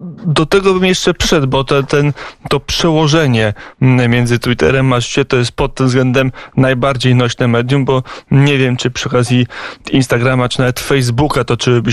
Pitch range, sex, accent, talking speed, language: 125-140 Hz, male, native, 160 wpm, Polish